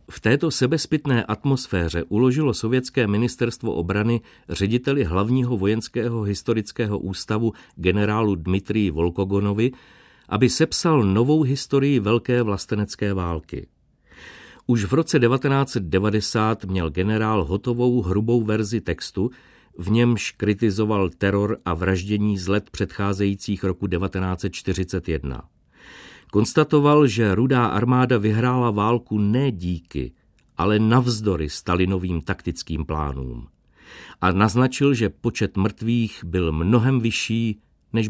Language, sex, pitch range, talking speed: Czech, male, 95-125 Hz, 105 wpm